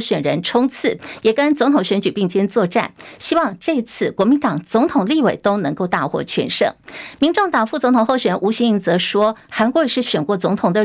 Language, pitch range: Chinese, 200-275 Hz